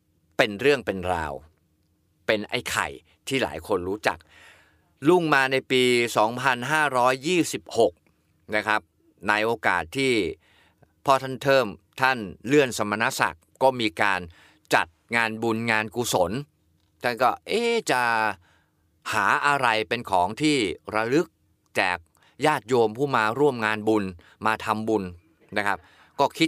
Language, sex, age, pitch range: Thai, male, 30-49, 95-135 Hz